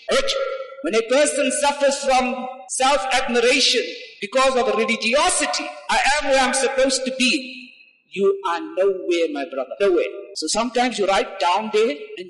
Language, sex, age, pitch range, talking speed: English, male, 50-69, 220-325 Hz, 145 wpm